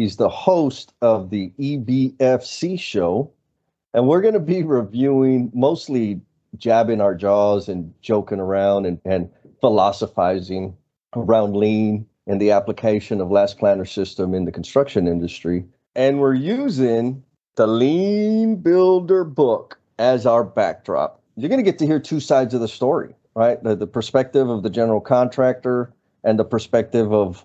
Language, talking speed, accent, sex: English, 150 wpm, American, male